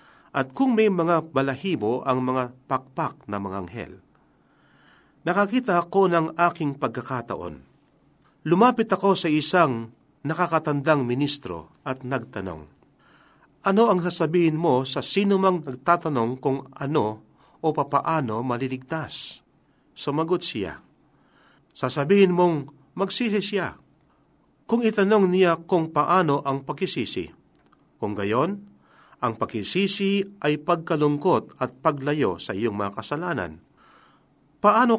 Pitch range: 130-180 Hz